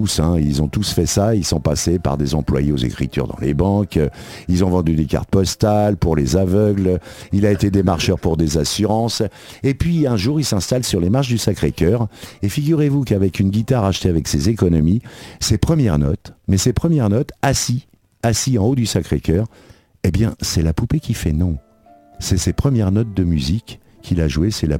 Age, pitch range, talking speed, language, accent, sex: 50-69, 90-120 Hz, 205 wpm, French, French, male